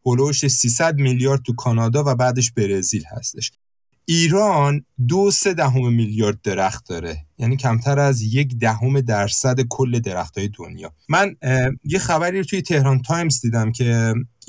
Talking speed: 140 wpm